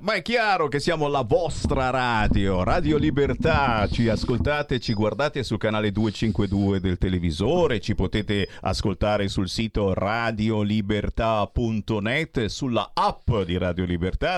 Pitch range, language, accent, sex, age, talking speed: 105-160 Hz, Italian, native, male, 50-69, 125 wpm